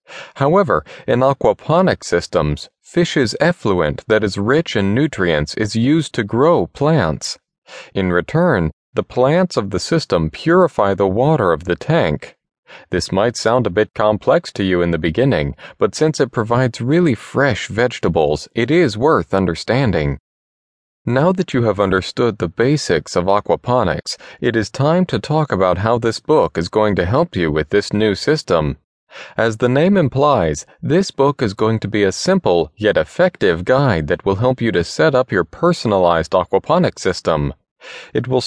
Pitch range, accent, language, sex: 95-140 Hz, American, English, male